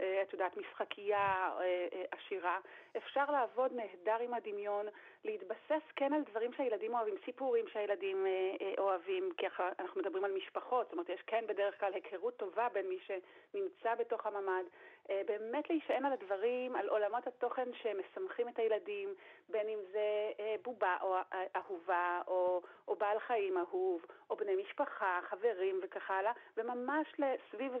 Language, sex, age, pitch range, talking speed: Hebrew, female, 40-59, 200-290 Hz, 140 wpm